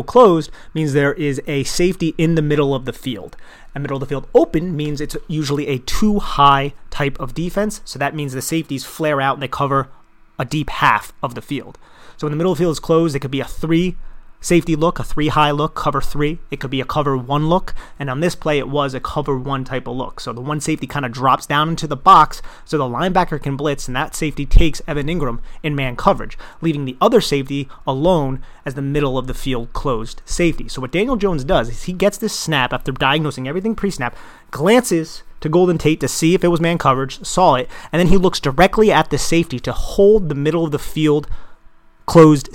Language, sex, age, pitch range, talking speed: English, male, 30-49, 135-165 Hz, 230 wpm